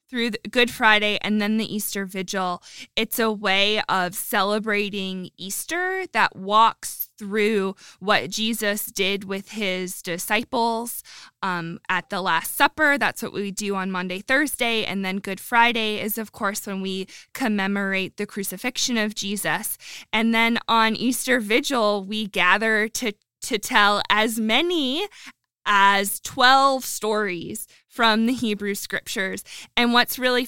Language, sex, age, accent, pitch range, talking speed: English, female, 20-39, American, 200-235 Hz, 140 wpm